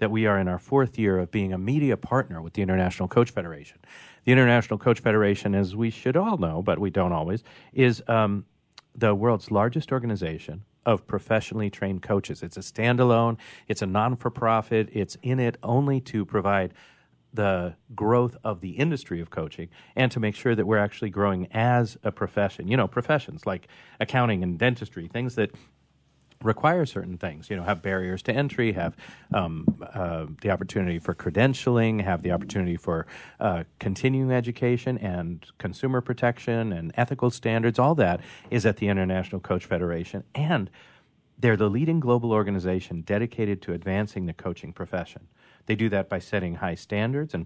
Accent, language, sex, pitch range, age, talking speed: American, English, male, 95-120 Hz, 40-59, 170 wpm